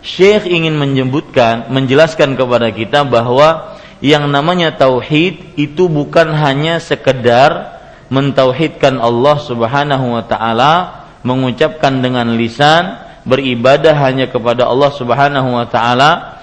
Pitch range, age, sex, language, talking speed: 135-170 Hz, 40-59, male, Malay, 105 wpm